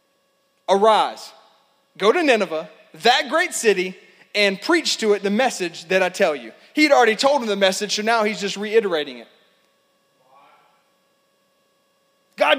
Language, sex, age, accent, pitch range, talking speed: English, male, 30-49, American, 255-345 Hz, 150 wpm